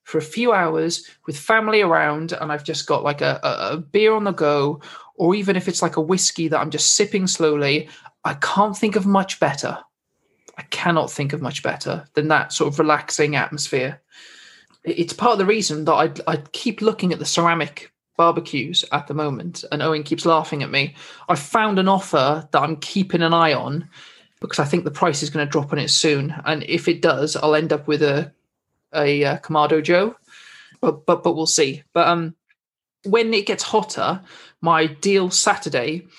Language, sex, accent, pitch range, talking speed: English, male, British, 155-190 Hz, 200 wpm